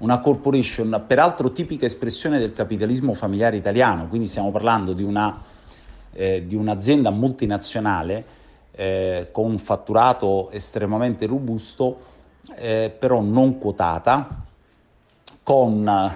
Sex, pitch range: male, 100-130 Hz